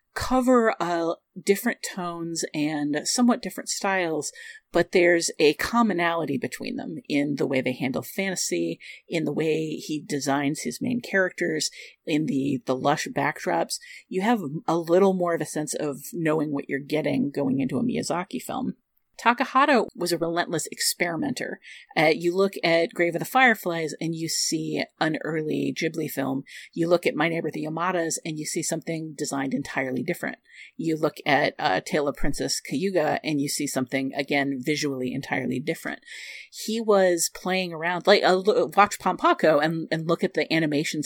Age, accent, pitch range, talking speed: 40-59, American, 150-195 Hz, 170 wpm